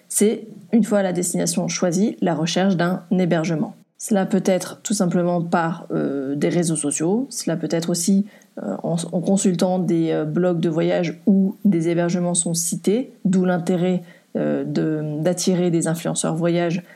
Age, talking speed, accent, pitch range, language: 30-49, 155 wpm, French, 170-195 Hz, French